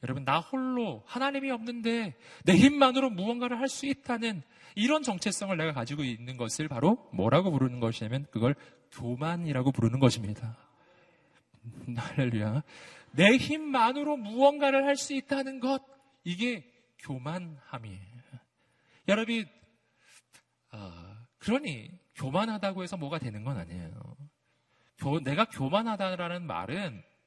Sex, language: male, Korean